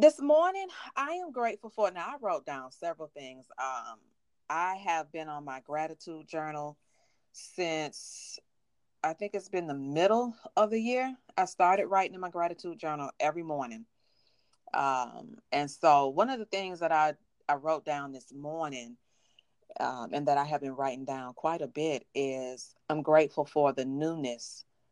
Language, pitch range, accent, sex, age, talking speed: English, 140-185 Hz, American, female, 30-49, 170 wpm